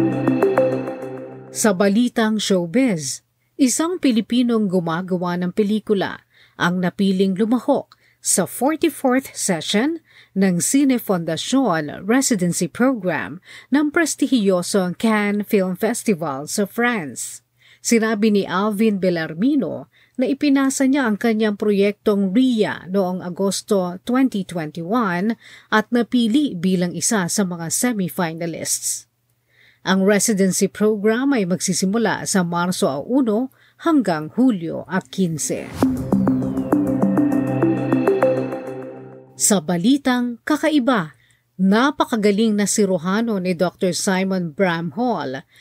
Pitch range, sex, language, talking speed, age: 175-235 Hz, female, Filipino, 90 wpm, 40-59